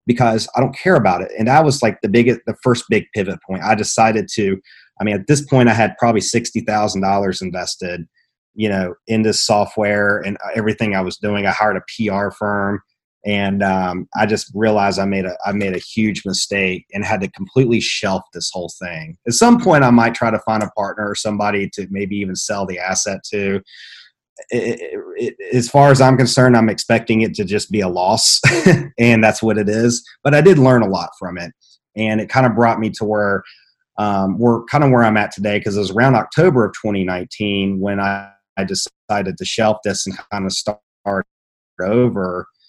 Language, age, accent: English, 30-49, American